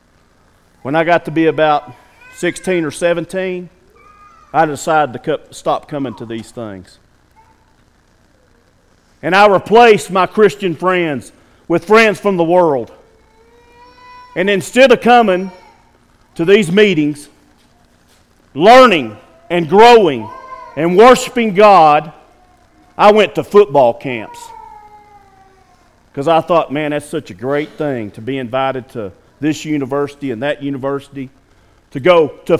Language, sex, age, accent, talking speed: English, male, 50-69, American, 125 wpm